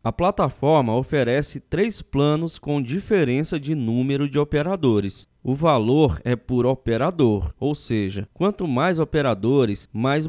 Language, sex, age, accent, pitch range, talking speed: Portuguese, male, 20-39, Brazilian, 125-165 Hz, 130 wpm